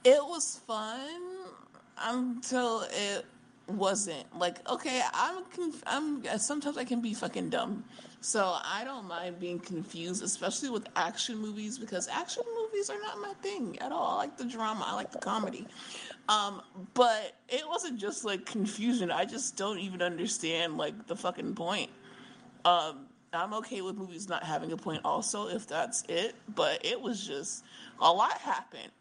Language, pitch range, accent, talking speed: English, 180-250 Hz, American, 165 wpm